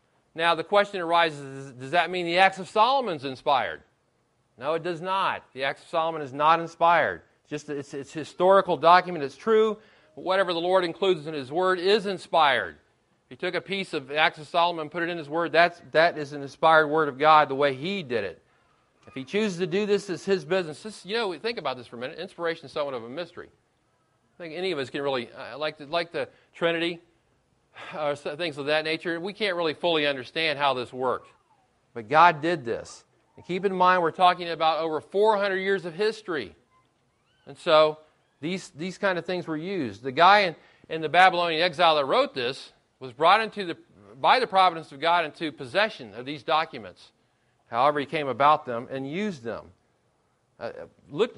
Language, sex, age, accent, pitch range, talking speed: English, male, 40-59, American, 145-185 Hz, 210 wpm